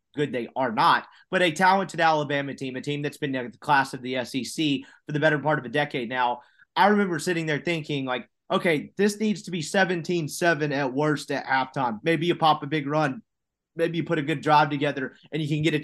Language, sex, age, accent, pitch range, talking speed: English, male, 30-49, American, 140-165 Hz, 225 wpm